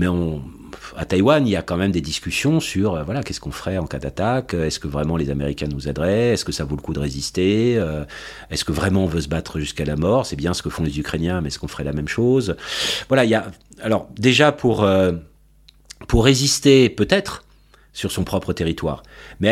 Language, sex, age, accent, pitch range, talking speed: French, male, 40-59, French, 80-110 Hz, 225 wpm